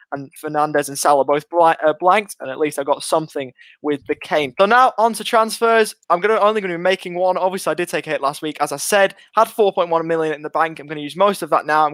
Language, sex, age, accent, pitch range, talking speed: English, male, 20-39, British, 150-200 Hz, 285 wpm